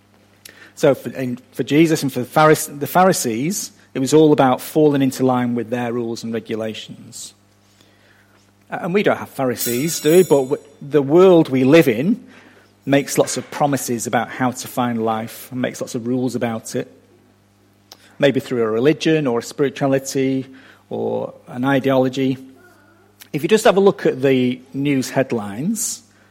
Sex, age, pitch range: male, 40-59, 100-140 Hz